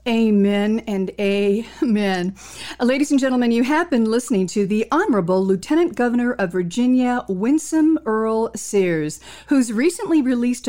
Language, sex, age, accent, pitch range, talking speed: English, female, 50-69, American, 195-275 Hz, 130 wpm